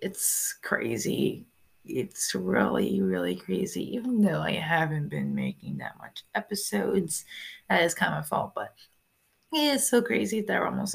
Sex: female